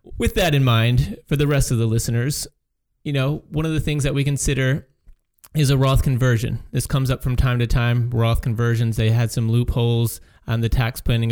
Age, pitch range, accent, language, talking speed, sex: 30-49, 115-135 Hz, American, English, 210 wpm, male